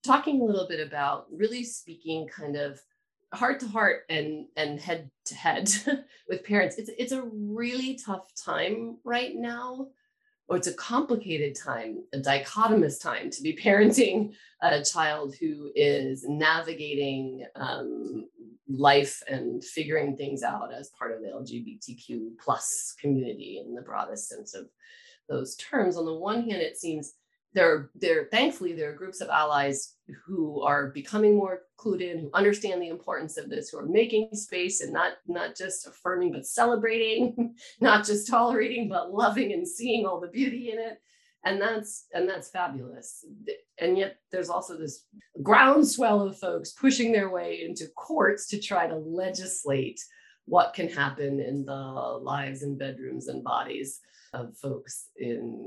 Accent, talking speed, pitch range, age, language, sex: American, 160 wpm, 145-235 Hz, 30-49, English, female